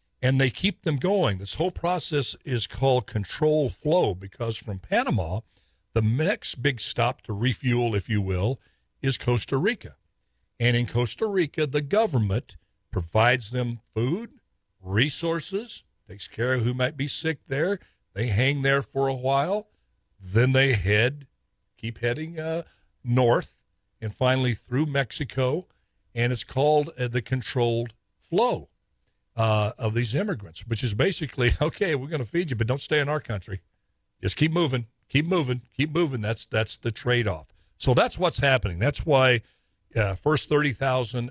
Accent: American